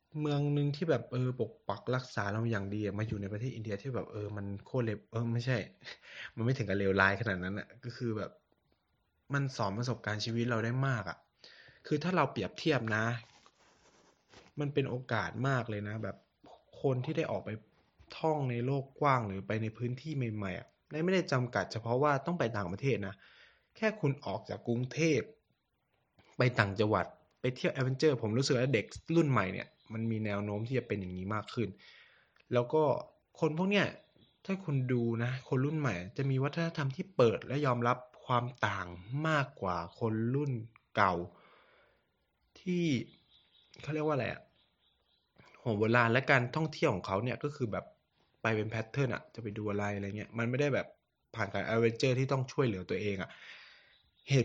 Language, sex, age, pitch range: Thai, male, 20-39, 105-140 Hz